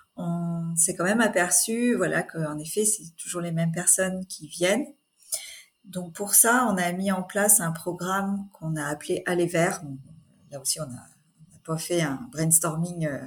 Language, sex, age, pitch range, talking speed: French, female, 40-59, 160-195 Hz, 170 wpm